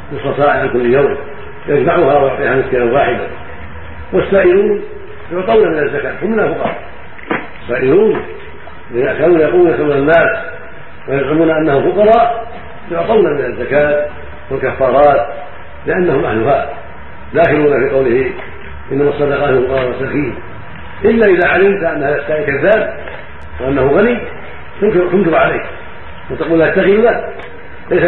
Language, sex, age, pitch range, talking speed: Arabic, male, 50-69, 145-210 Hz, 110 wpm